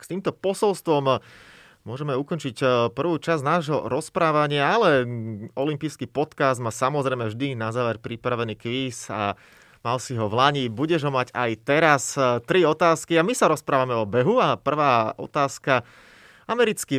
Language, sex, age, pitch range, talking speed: Slovak, male, 30-49, 120-160 Hz, 150 wpm